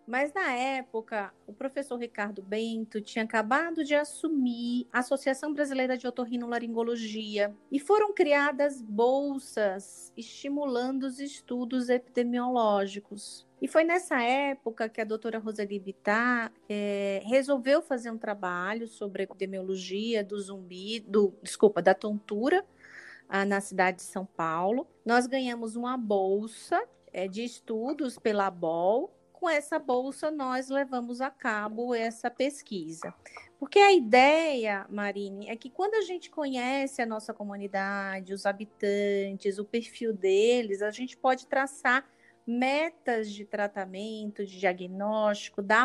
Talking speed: 125 wpm